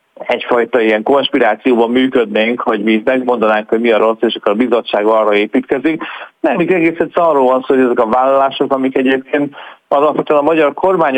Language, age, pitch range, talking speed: Hungarian, 30-49, 110-135 Hz, 180 wpm